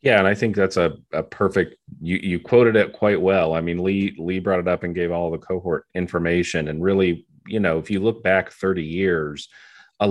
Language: English